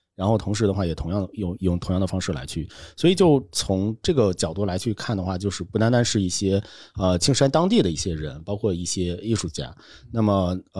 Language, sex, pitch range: Chinese, male, 90-110 Hz